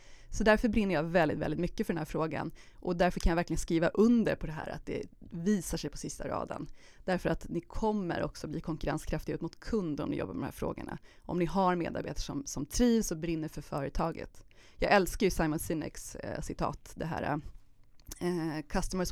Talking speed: 205 wpm